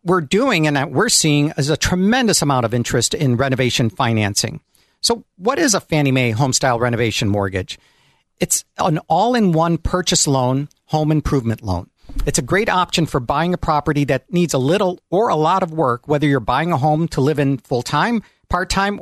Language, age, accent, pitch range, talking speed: English, 50-69, American, 135-180 Hz, 185 wpm